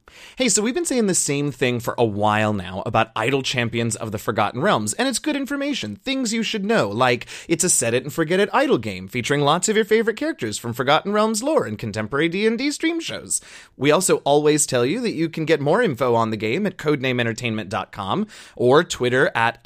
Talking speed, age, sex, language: 205 wpm, 30-49, male, English